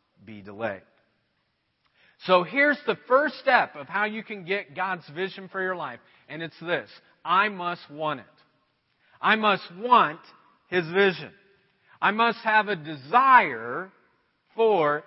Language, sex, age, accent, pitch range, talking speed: English, male, 50-69, American, 165-235 Hz, 140 wpm